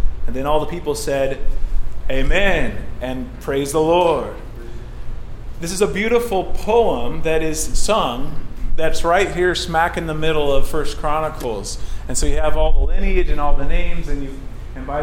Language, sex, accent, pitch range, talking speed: English, male, American, 135-165 Hz, 175 wpm